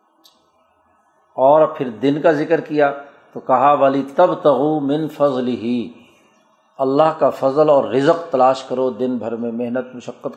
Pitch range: 130-155 Hz